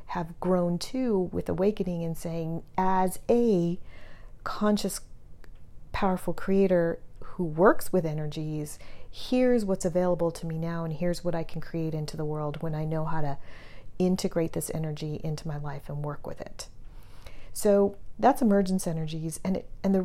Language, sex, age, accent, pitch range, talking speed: English, female, 40-59, American, 165-200 Hz, 160 wpm